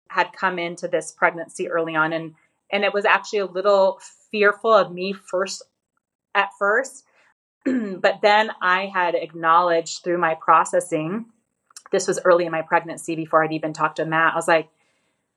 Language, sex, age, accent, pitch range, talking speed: English, female, 30-49, American, 170-205 Hz, 170 wpm